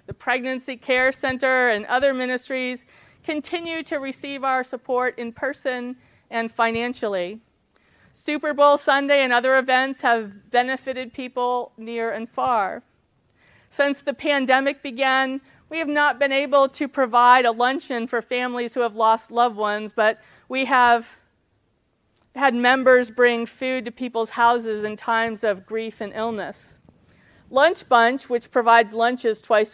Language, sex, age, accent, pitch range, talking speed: English, female, 40-59, American, 225-275 Hz, 140 wpm